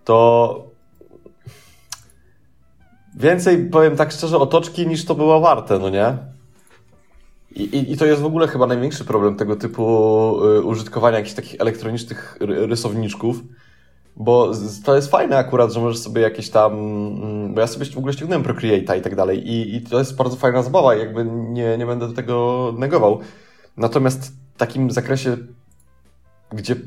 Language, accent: Polish, native